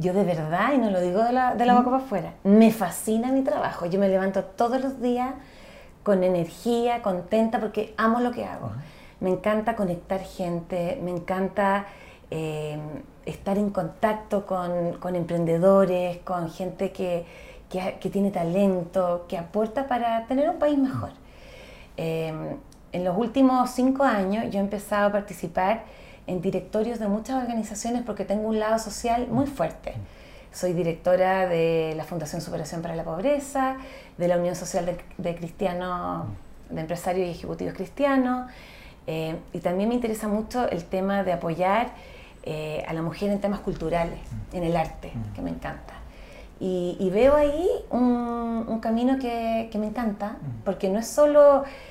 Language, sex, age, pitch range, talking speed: English, female, 30-49, 175-235 Hz, 160 wpm